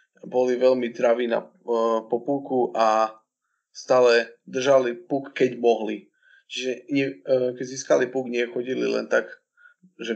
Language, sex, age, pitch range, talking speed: Slovak, male, 20-39, 115-140 Hz, 130 wpm